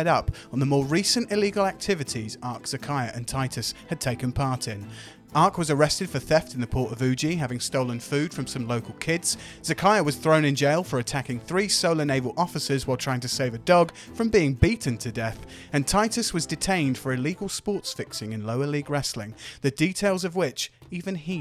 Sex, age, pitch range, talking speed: male, 30-49, 125-170 Hz, 200 wpm